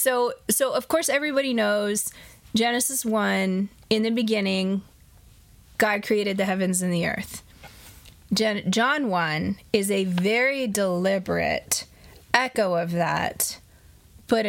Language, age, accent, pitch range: English, 20-39, American, 185-220 Hz